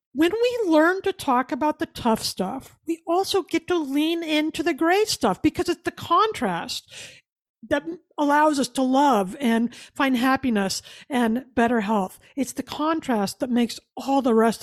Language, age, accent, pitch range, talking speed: English, 50-69, American, 245-335 Hz, 170 wpm